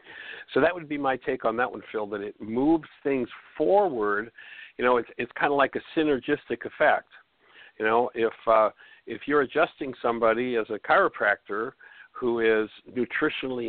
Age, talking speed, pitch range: 60-79, 170 wpm, 105-125 Hz